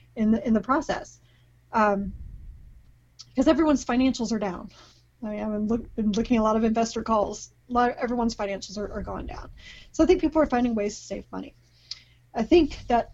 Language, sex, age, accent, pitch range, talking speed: English, female, 30-49, American, 210-265 Hz, 210 wpm